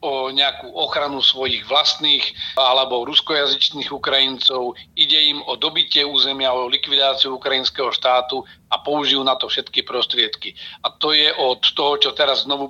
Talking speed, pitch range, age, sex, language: 145 wpm, 130-145 Hz, 40-59, male, Slovak